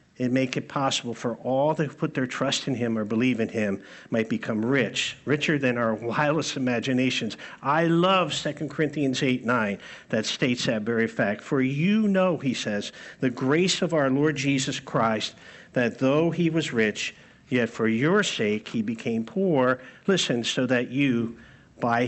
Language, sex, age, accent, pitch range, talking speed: English, male, 50-69, American, 125-175 Hz, 175 wpm